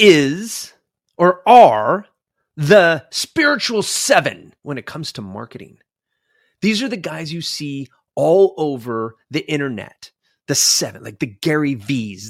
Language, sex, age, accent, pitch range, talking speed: English, male, 30-49, American, 115-180 Hz, 130 wpm